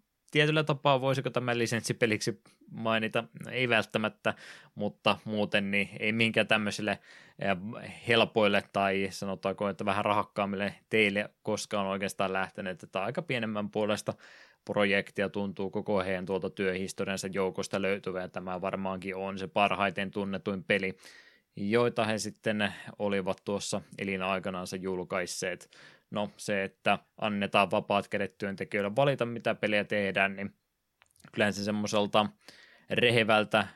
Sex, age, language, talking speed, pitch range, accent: male, 20-39, Finnish, 115 wpm, 95-110 Hz, native